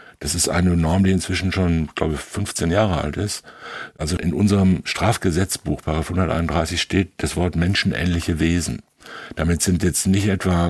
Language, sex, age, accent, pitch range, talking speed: German, male, 60-79, German, 80-95 Hz, 170 wpm